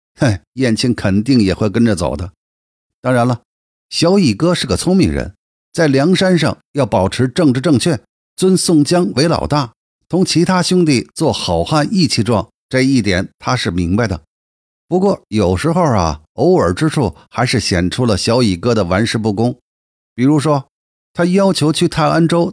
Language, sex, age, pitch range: Chinese, male, 50-69, 105-165 Hz